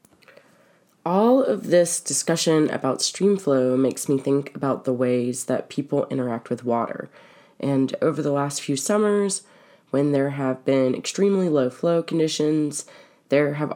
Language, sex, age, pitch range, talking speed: English, female, 20-39, 130-170 Hz, 150 wpm